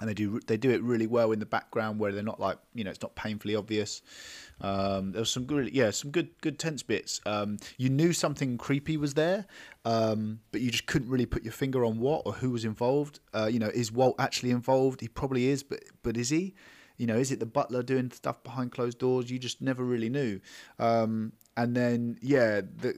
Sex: male